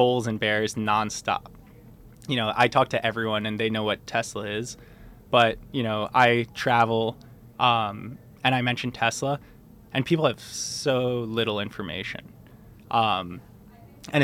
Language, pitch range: English, 110-125 Hz